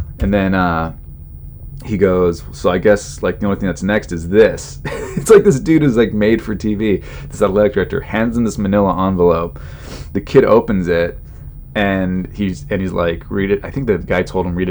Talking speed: 210 wpm